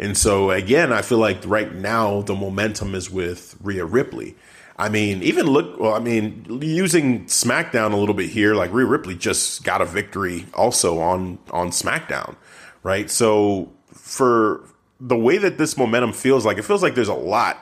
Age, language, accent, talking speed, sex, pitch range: 30-49, English, American, 185 wpm, male, 95-115 Hz